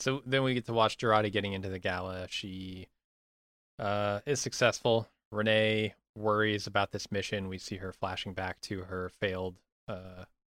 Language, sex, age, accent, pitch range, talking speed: English, male, 20-39, American, 95-125 Hz, 165 wpm